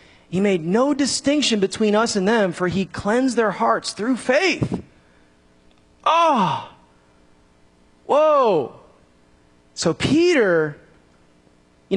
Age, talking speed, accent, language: 30-49, 100 wpm, American, English